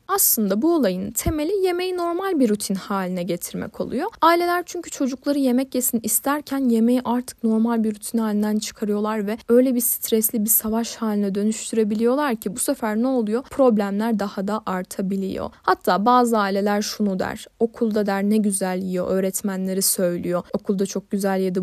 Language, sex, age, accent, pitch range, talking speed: Turkish, female, 10-29, native, 205-245 Hz, 160 wpm